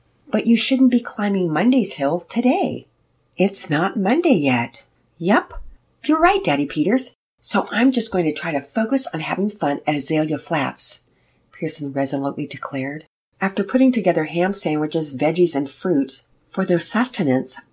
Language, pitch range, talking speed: English, 140-185 Hz, 150 wpm